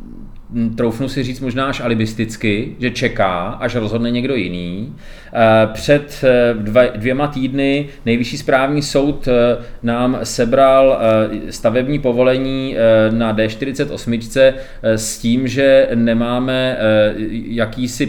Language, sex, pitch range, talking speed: Czech, male, 115-130 Hz, 100 wpm